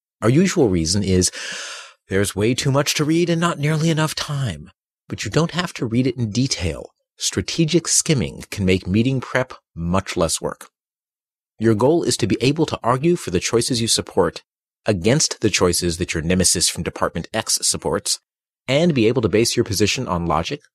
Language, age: English, 40-59